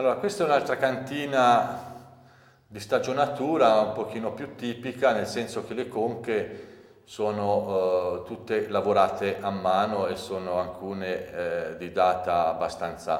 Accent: Italian